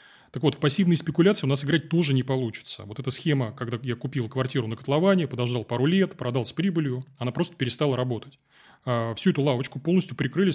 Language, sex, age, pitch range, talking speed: Russian, male, 20-39, 125-160 Hz, 200 wpm